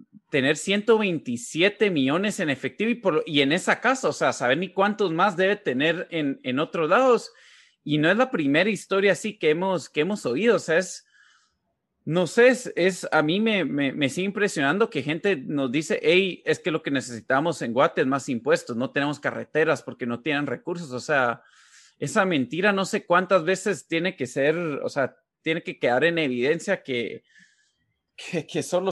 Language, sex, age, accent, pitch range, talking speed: Spanish, male, 30-49, Mexican, 145-200 Hz, 195 wpm